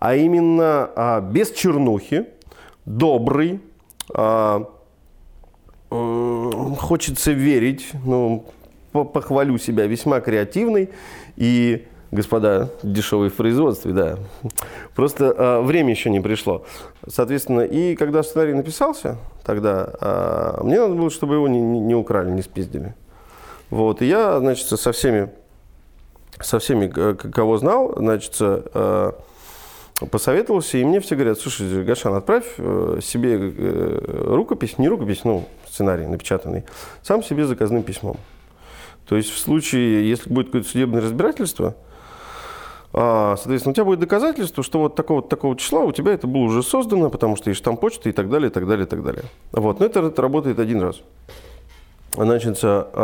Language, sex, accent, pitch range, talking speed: Russian, male, native, 105-150 Hz, 140 wpm